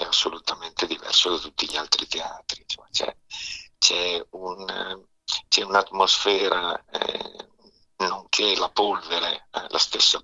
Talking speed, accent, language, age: 115 wpm, native, Italian, 50-69